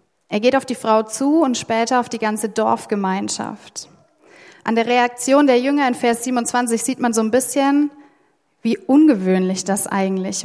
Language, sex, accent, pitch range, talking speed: German, female, German, 215-265 Hz, 165 wpm